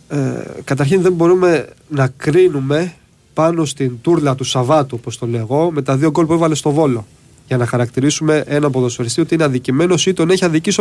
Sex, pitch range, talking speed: male, 130-170 Hz, 195 wpm